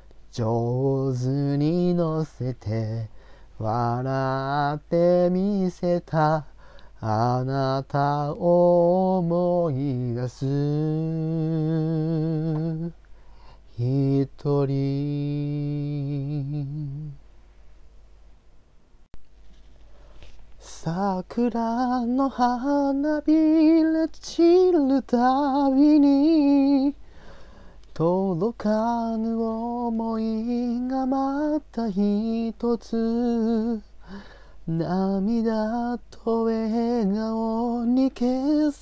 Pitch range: 160-265 Hz